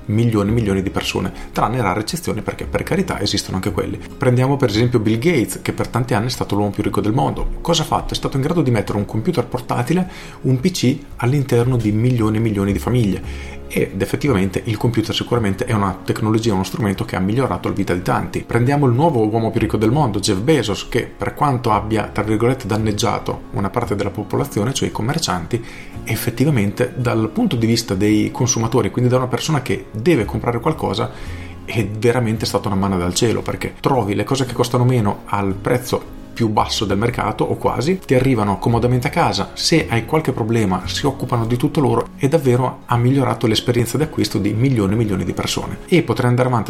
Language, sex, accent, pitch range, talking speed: Italian, male, native, 100-125 Hz, 205 wpm